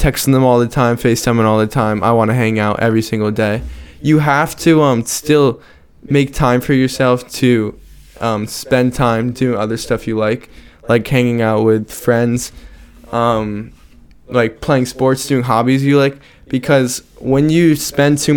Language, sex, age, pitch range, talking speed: English, male, 10-29, 110-130 Hz, 170 wpm